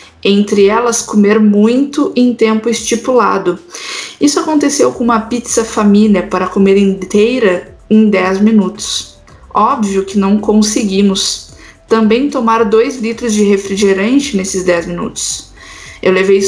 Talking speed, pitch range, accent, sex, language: 125 wpm, 195-230 Hz, Brazilian, female, Portuguese